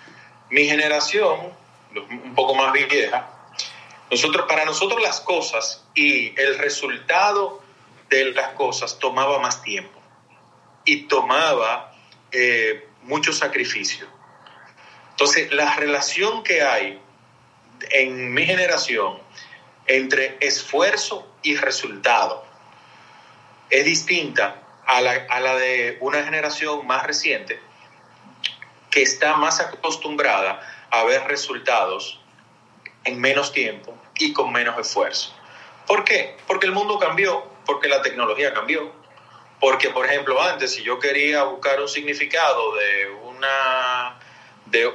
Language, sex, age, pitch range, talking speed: Spanish, male, 30-49, 135-215 Hz, 110 wpm